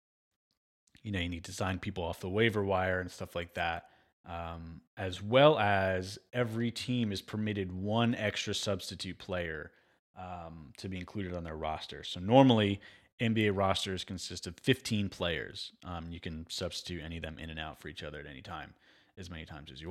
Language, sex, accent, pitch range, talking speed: English, male, American, 85-110 Hz, 190 wpm